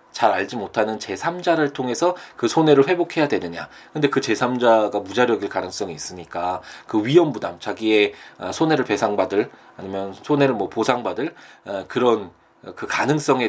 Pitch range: 90-135 Hz